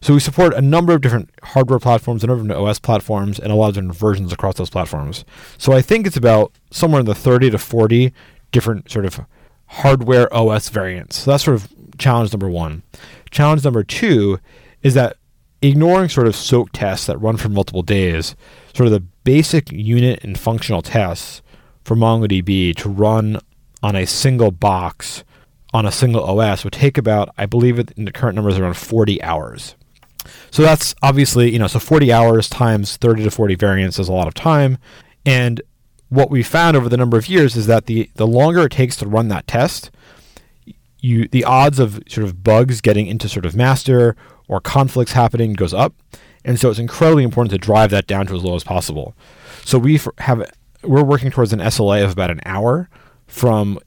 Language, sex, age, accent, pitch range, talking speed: English, male, 30-49, American, 105-130 Hz, 195 wpm